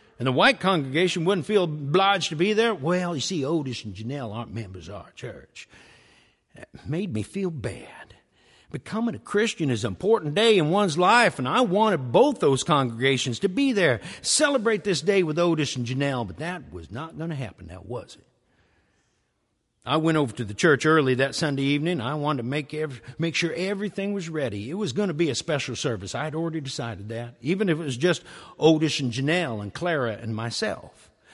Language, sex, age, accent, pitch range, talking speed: English, male, 50-69, American, 130-205 Hz, 205 wpm